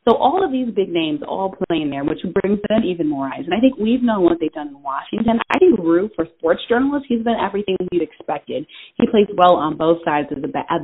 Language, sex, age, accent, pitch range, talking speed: English, female, 30-49, American, 165-245 Hz, 255 wpm